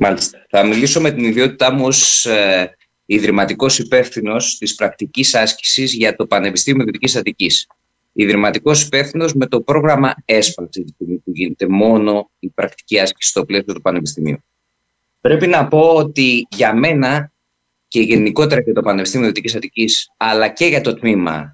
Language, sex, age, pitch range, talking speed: Greek, male, 20-39, 105-145 Hz, 150 wpm